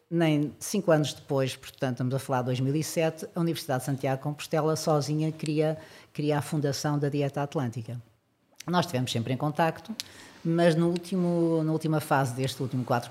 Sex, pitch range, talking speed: female, 130-170 Hz, 170 wpm